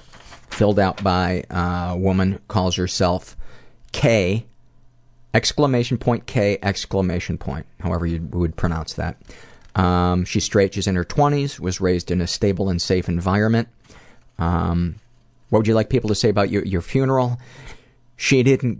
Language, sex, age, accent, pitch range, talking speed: English, male, 40-59, American, 90-115 Hz, 150 wpm